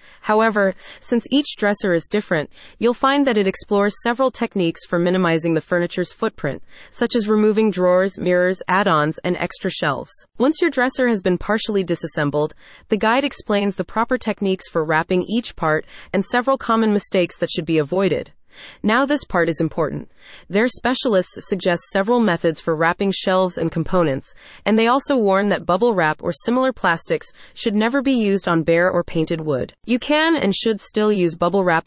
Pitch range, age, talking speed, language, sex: 175-225 Hz, 30-49, 175 wpm, English, female